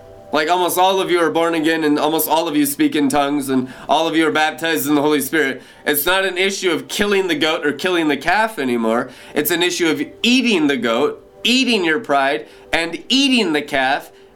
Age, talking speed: 20-39, 220 wpm